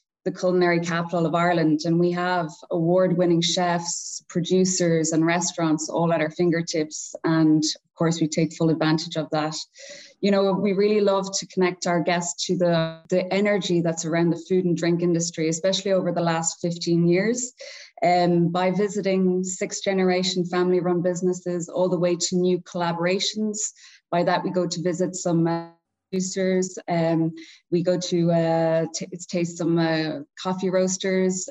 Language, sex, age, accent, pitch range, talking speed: English, female, 20-39, Irish, 170-185 Hz, 160 wpm